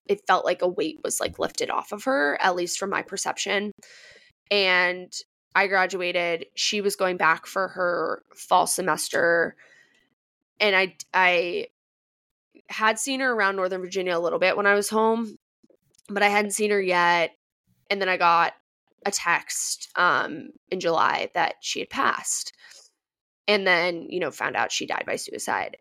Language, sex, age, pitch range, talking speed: English, female, 20-39, 185-245 Hz, 165 wpm